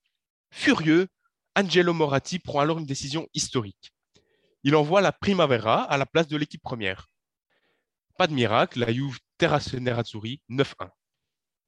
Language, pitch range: French, 115-150 Hz